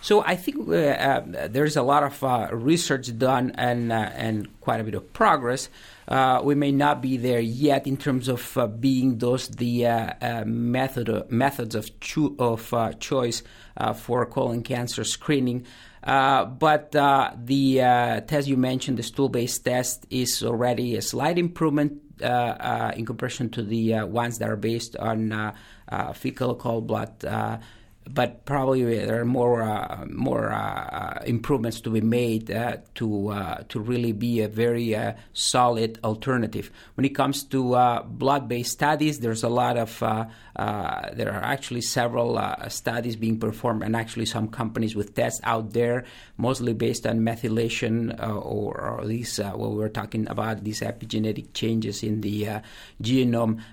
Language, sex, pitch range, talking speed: English, male, 110-130 Hz, 175 wpm